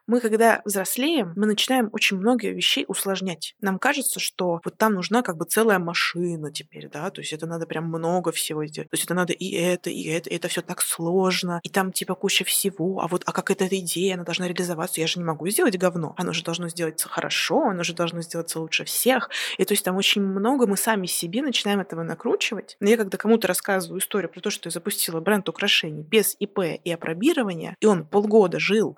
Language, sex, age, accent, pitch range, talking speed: Russian, female, 20-39, native, 175-210 Hz, 220 wpm